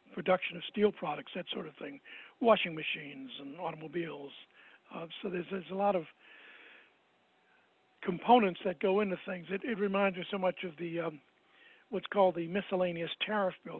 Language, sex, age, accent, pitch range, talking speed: English, male, 60-79, American, 170-205 Hz, 170 wpm